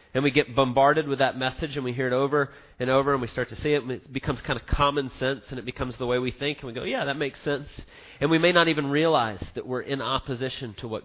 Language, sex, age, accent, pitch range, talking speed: English, male, 30-49, American, 125-145 Hz, 290 wpm